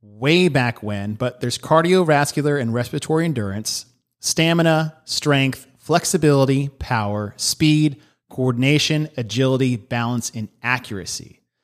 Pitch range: 125-160 Hz